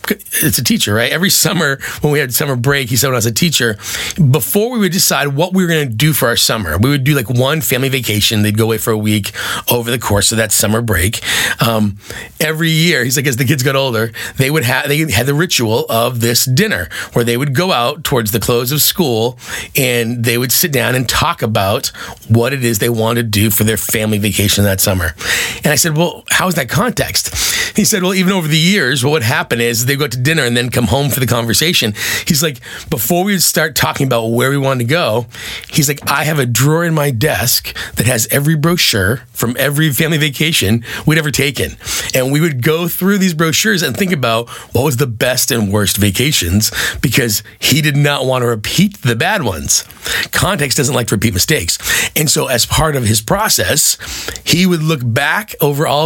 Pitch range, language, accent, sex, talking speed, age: 115-155 Hz, English, American, male, 225 wpm, 30-49